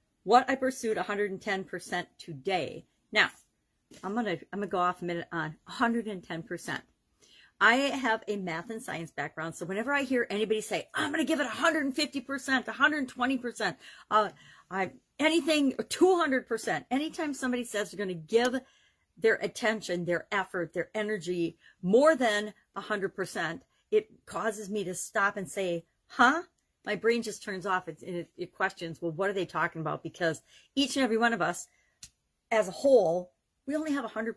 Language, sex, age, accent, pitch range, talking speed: English, female, 50-69, American, 175-240 Hz, 165 wpm